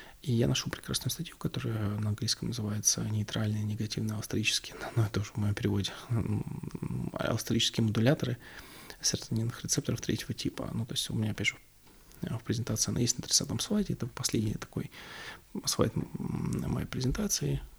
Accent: native